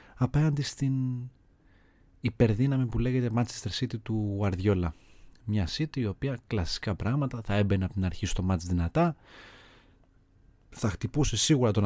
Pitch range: 95-115 Hz